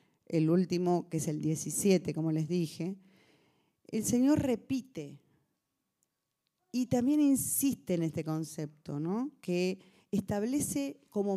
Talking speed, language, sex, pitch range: 110 wpm, Spanish, female, 165-240 Hz